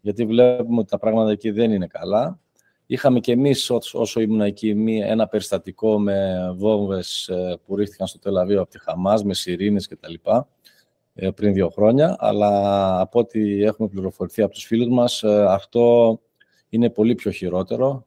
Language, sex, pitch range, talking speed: Greek, male, 95-110 Hz, 160 wpm